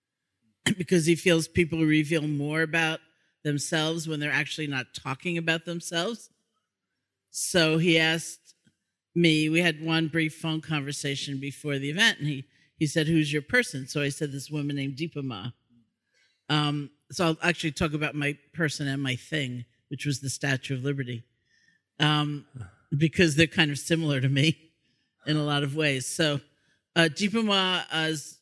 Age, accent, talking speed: 50-69, American, 160 wpm